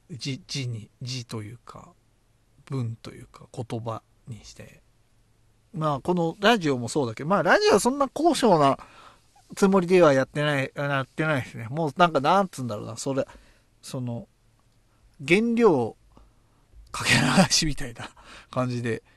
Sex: male